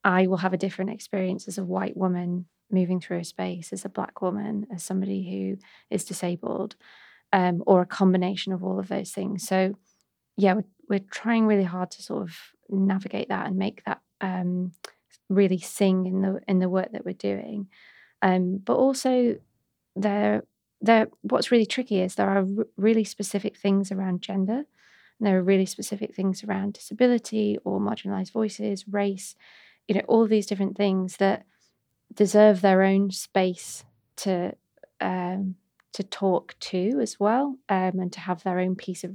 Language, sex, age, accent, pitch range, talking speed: English, female, 20-39, British, 185-205 Hz, 175 wpm